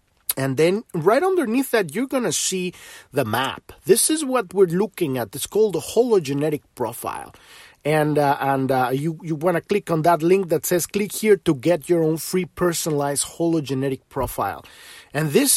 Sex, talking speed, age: male, 185 wpm, 30-49